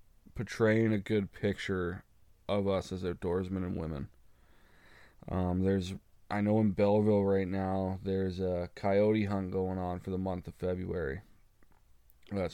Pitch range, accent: 95-105 Hz, American